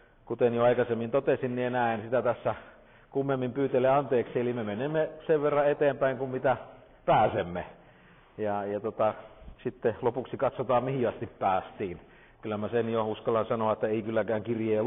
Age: 50-69